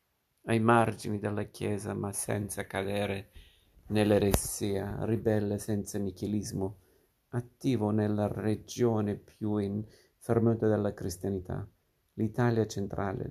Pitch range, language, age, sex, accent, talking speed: 100-115 Hz, Italian, 50-69, male, native, 95 wpm